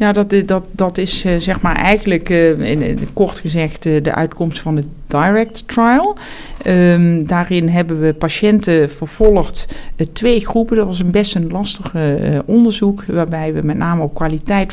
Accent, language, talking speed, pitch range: Dutch, Dutch, 175 wpm, 155-195 Hz